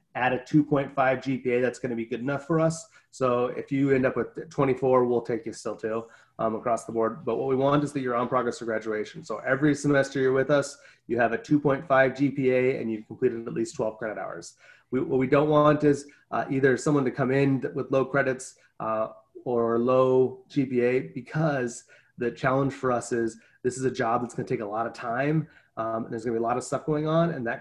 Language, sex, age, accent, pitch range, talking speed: English, male, 30-49, American, 120-145 Hz, 230 wpm